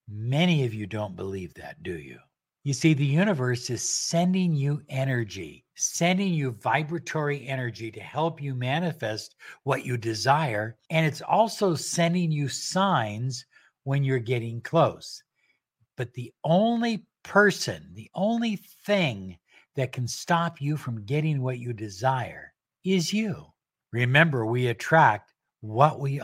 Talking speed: 135 wpm